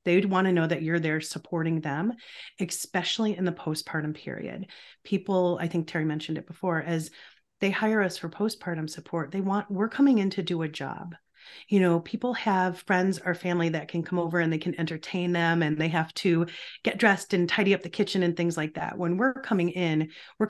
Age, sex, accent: 30-49, female, American